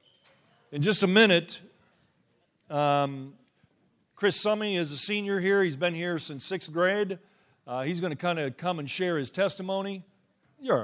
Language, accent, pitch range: English, American, 135-170 Hz